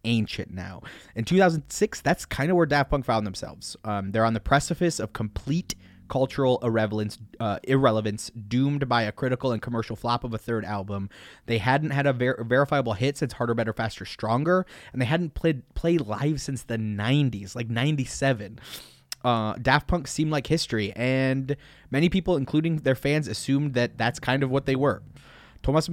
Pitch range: 110-135 Hz